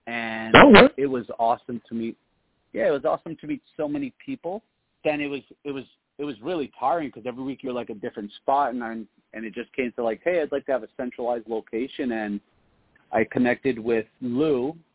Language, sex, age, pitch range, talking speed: English, male, 40-59, 110-130 Hz, 210 wpm